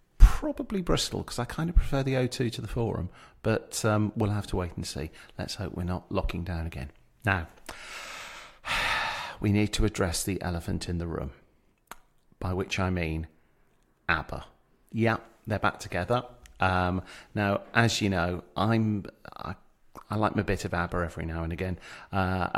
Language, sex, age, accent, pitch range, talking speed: English, male, 40-59, British, 95-130 Hz, 175 wpm